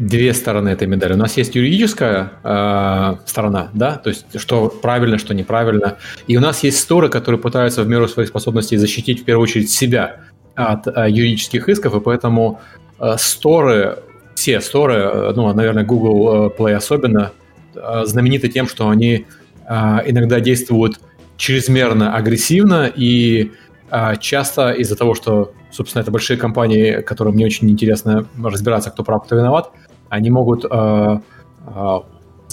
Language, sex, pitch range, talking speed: Russian, male, 105-125 Hz, 150 wpm